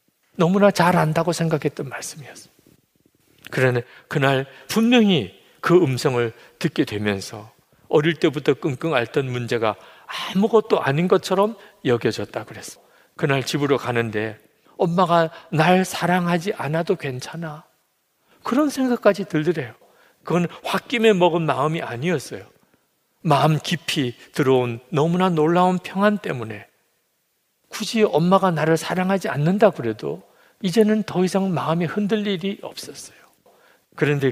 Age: 40-59